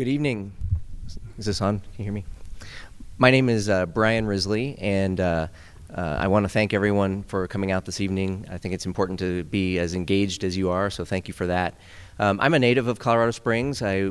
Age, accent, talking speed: 30-49, American, 220 wpm